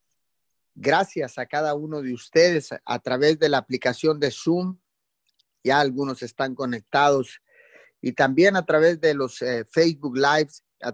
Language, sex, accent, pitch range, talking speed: Spanish, male, Mexican, 130-170 Hz, 150 wpm